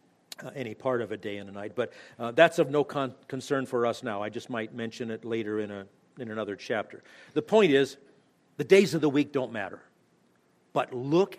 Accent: American